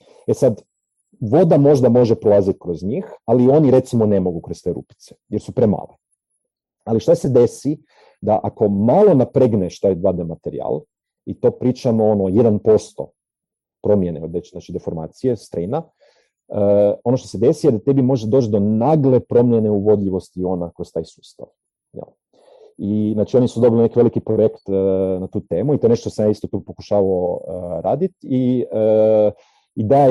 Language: Croatian